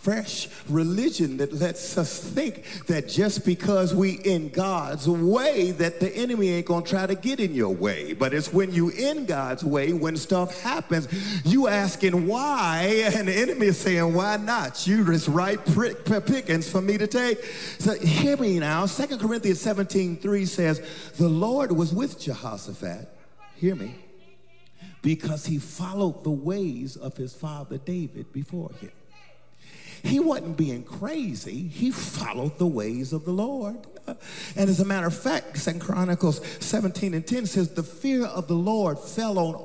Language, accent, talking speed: English, American, 165 wpm